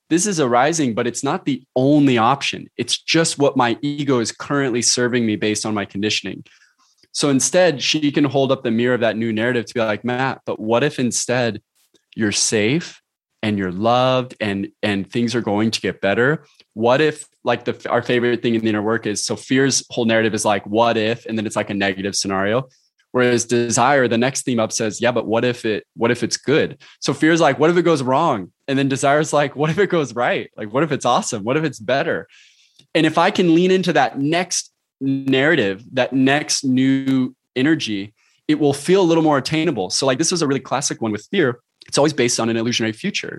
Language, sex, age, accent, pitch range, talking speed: English, male, 20-39, American, 115-145 Hz, 225 wpm